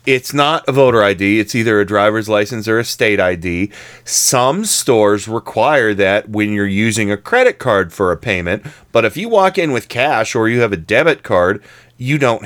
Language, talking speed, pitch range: English, 200 wpm, 100-130 Hz